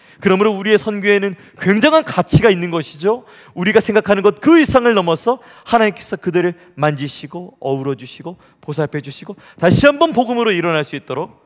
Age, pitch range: 30-49, 145-185 Hz